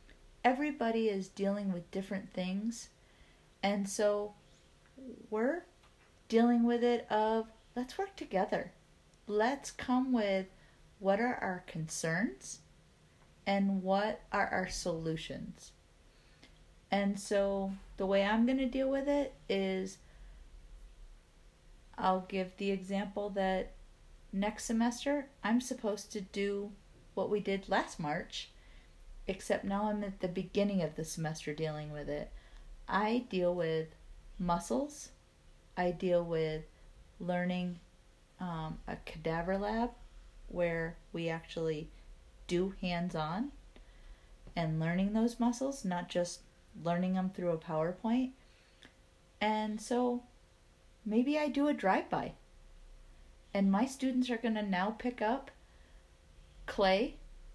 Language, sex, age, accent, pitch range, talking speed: English, female, 40-59, American, 175-230 Hz, 115 wpm